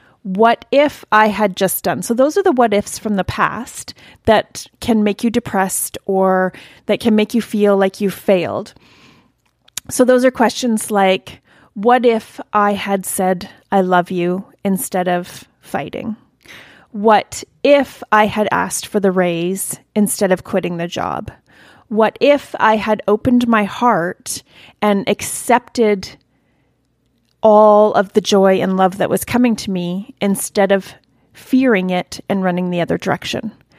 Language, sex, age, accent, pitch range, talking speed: English, female, 30-49, American, 195-245 Hz, 155 wpm